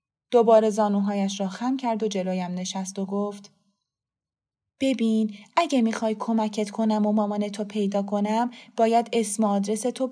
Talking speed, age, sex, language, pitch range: 140 wpm, 20-39, female, Persian, 195-250 Hz